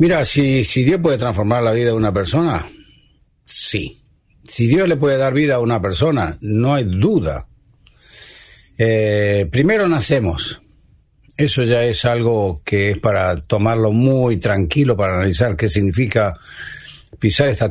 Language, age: Spanish, 60-79